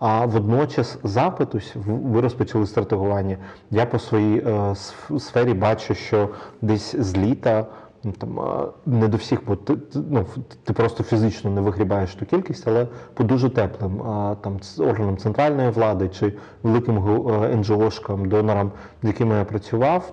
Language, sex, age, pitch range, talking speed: Ukrainian, male, 30-49, 105-120 Hz, 140 wpm